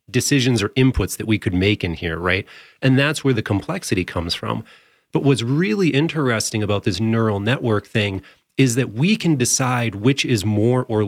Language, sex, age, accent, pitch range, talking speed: English, male, 30-49, American, 100-130 Hz, 190 wpm